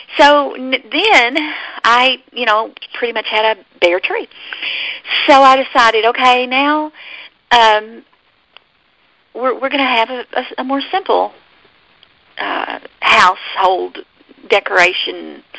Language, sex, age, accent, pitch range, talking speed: English, female, 40-59, American, 205-260 Hz, 110 wpm